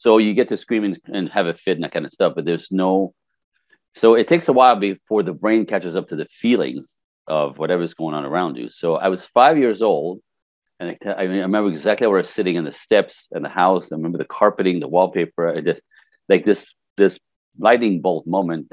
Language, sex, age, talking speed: English, male, 40-59, 230 wpm